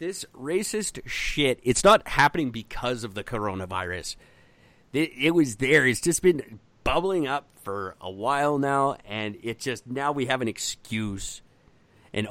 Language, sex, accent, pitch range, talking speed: English, male, American, 110-150 Hz, 150 wpm